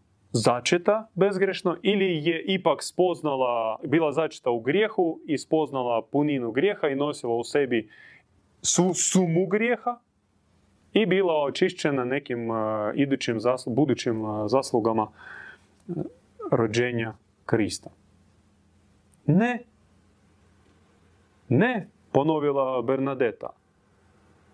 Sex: male